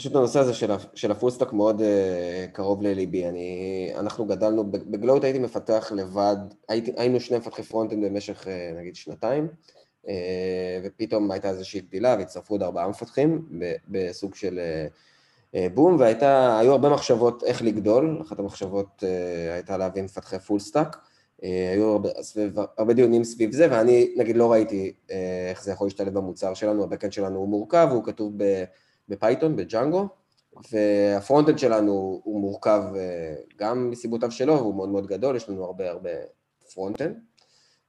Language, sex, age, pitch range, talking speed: Hebrew, male, 20-39, 95-120 Hz, 135 wpm